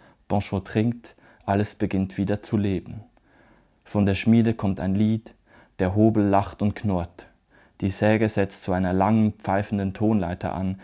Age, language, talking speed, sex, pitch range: 30-49, English, 150 wpm, male, 95-105 Hz